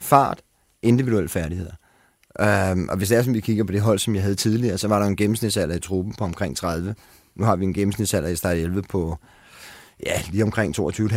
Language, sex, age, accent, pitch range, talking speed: Danish, male, 30-49, native, 95-110 Hz, 220 wpm